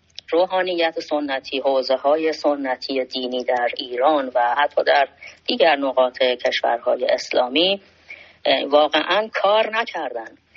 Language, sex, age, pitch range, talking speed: Persian, female, 30-49, 130-175 Hz, 100 wpm